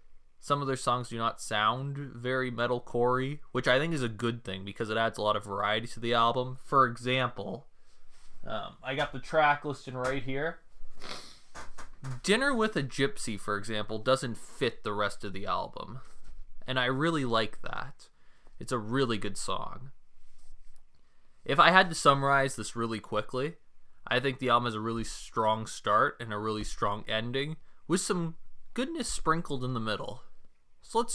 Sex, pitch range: male, 110-135 Hz